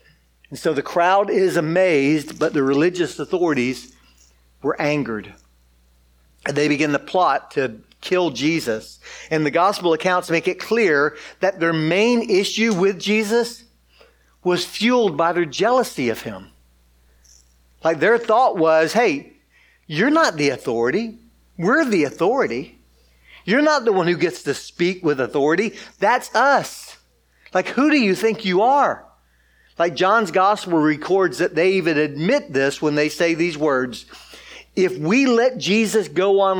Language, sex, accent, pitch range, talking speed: English, male, American, 155-225 Hz, 150 wpm